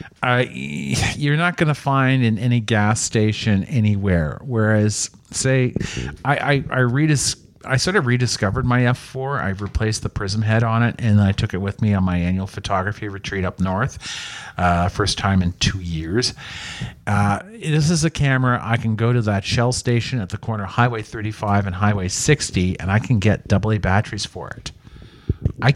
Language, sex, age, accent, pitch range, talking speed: English, male, 50-69, American, 100-125 Hz, 180 wpm